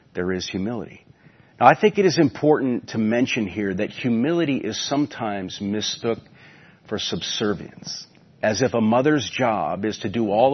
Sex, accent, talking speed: male, American, 160 wpm